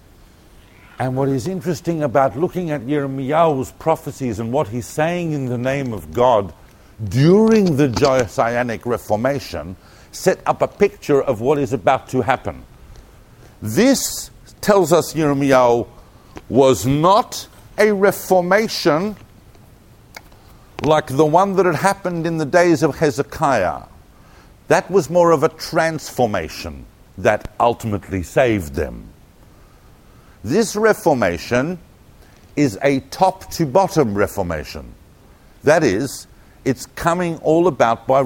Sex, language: male, English